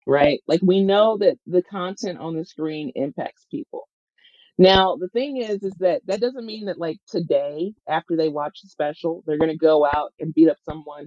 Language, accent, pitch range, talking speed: English, American, 160-195 Hz, 205 wpm